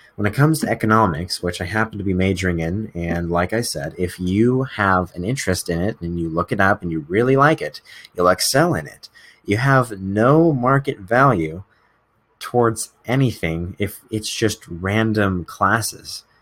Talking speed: 180 wpm